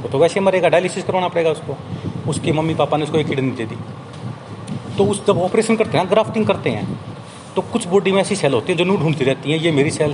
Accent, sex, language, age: native, male, Hindi, 30-49